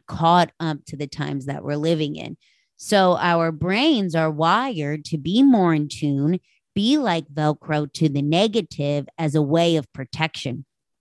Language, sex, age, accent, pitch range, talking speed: English, female, 30-49, American, 145-185 Hz, 165 wpm